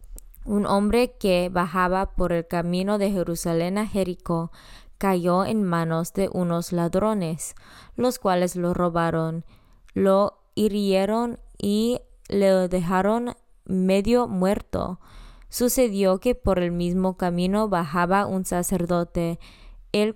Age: 20-39